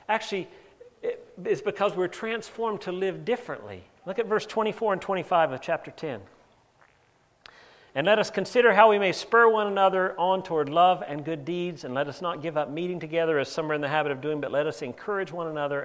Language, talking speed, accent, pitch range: English, 210 wpm, American, 155-210 Hz